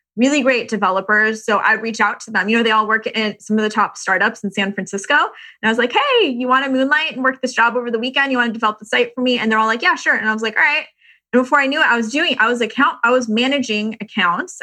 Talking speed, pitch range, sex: 310 wpm, 215-260 Hz, female